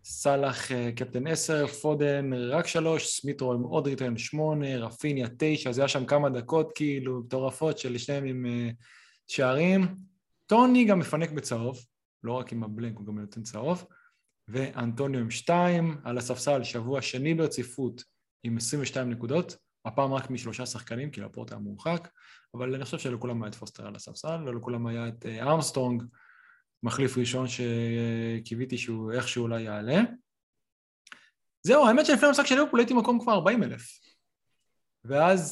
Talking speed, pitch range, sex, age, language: 150 wpm, 120-160 Hz, male, 20-39, Hebrew